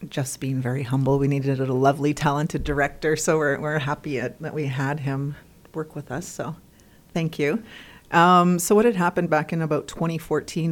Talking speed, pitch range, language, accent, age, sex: 190 wpm, 145-165 Hz, English, American, 30-49, female